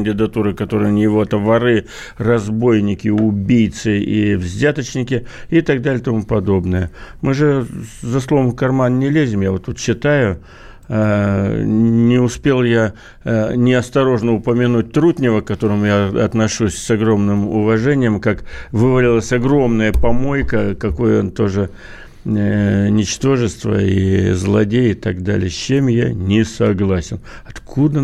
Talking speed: 125 wpm